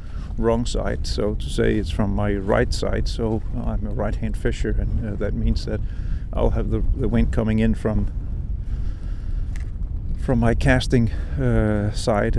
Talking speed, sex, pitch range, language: 160 wpm, male, 85-110 Hz, English